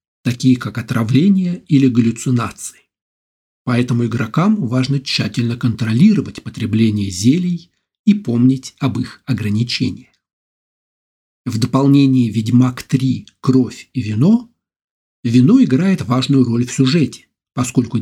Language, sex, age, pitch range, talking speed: Russian, male, 50-69, 115-145 Hz, 105 wpm